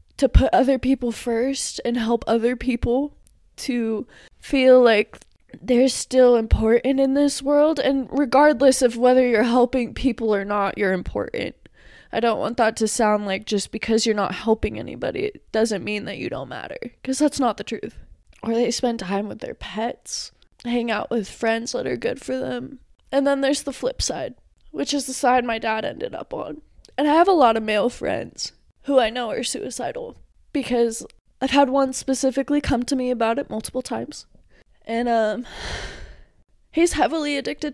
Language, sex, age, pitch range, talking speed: English, female, 20-39, 230-275 Hz, 185 wpm